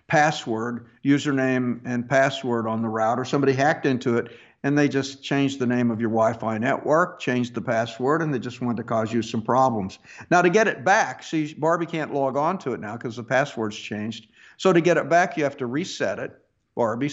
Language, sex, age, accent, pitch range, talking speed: English, male, 50-69, American, 115-145 Hz, 215 wpm